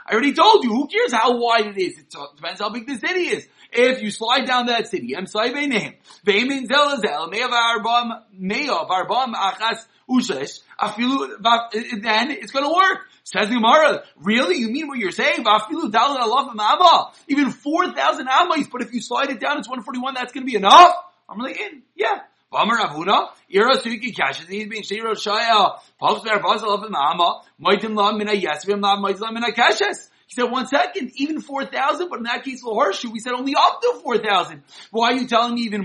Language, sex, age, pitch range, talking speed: English, male, 30-49, 220-290 Hz, 125 wpm